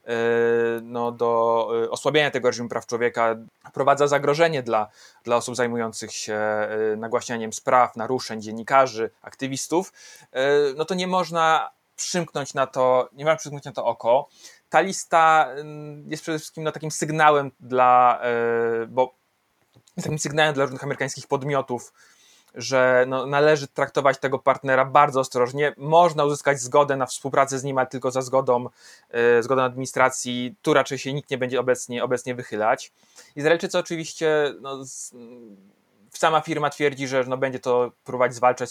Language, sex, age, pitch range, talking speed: Polish, male, 20-39, 115-140 Hz, 135 wpm